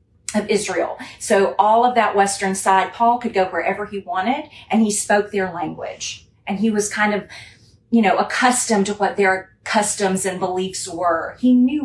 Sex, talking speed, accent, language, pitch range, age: female, 180 wpm, American, English, 175-225 Hz, 40-59